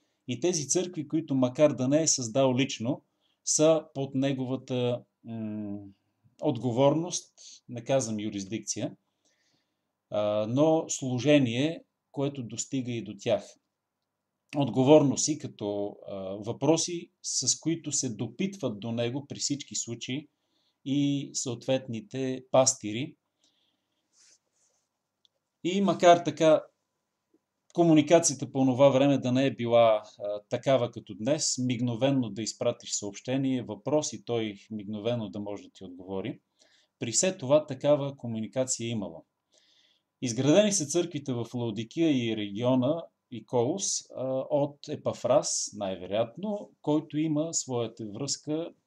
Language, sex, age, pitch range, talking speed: Bulgarian, male, 40-59, 115-150 Hz, 115 wpm